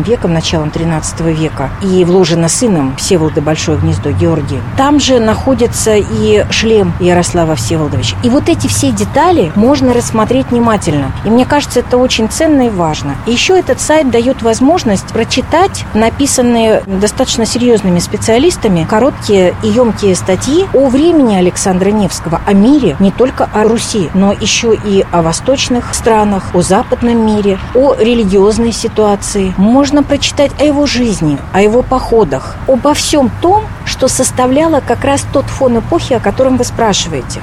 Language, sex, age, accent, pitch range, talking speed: Russian, female, 40-59, native, 180-255 Hz, 150 wpm